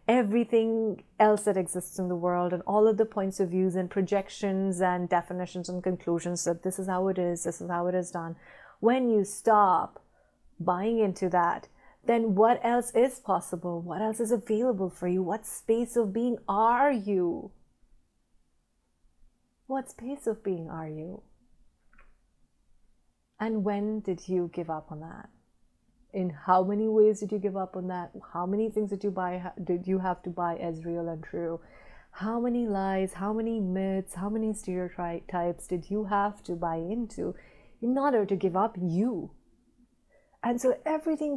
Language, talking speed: English, 170 wpm